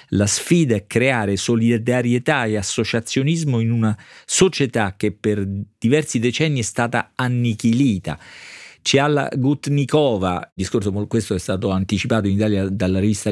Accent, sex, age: native, male, 40-59